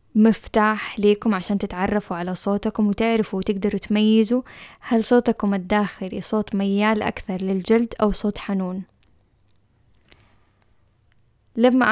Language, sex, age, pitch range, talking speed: Arabic, female, 10-29, 185-220 Hz, 100 wpm